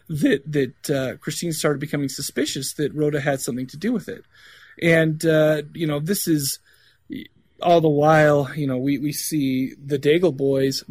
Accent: American